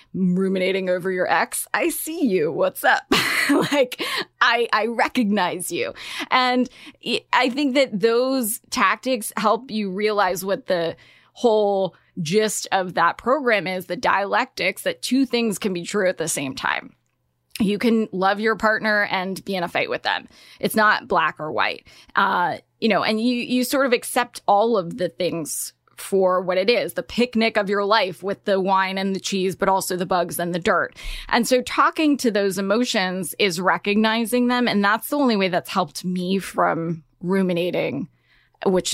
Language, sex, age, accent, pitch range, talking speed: English, female, 10-29, American, 180-235 Hz, 175 wpm